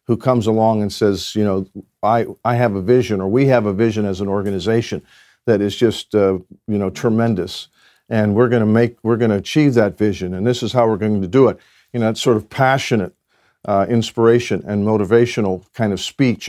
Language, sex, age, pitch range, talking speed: Persian, male, 50-69, 105-125 Hz, 220 wpm